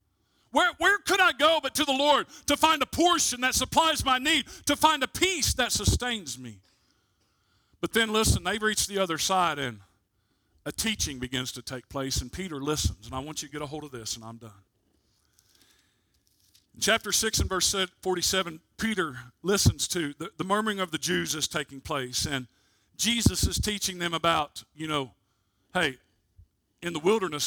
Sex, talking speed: male, 185 wpm